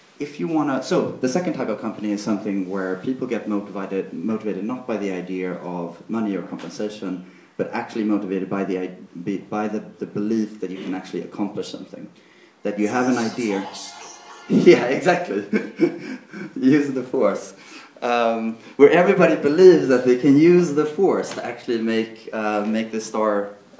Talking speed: 165 wpm